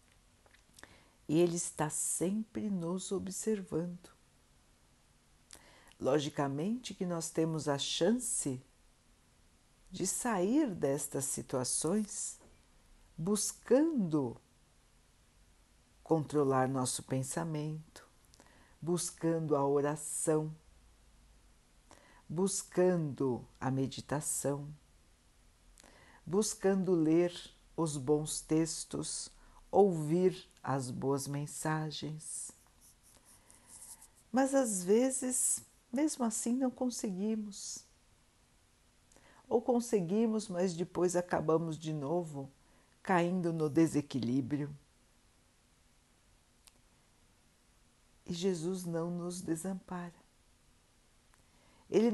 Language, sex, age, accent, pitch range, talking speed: Portuguese, female, 60-79, Brazilian, 140-190 Hz, 65 wpm